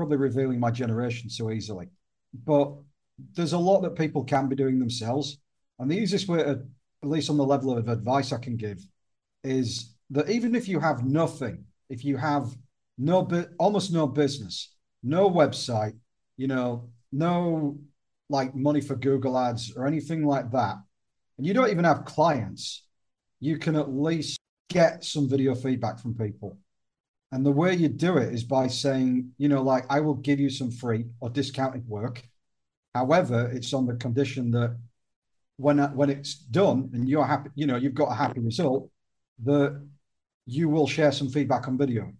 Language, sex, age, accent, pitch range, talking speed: English, male, 40-59, British, 120-145 Hz, 175 wpm